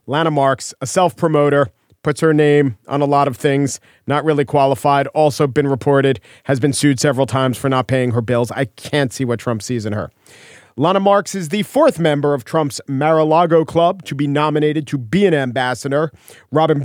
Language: English